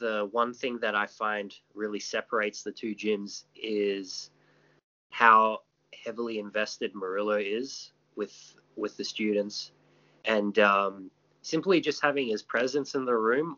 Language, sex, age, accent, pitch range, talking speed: English, male, 20-39, Australian, 100-115 Hz, 135 wpm